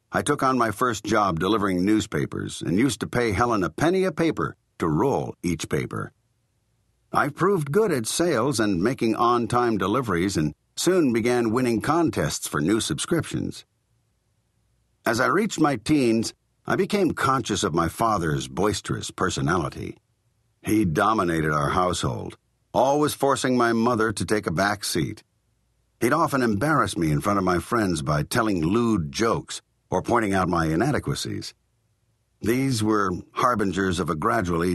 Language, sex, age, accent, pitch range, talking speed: English, male, 50-69, American, 95-120 Hz, 150 wpm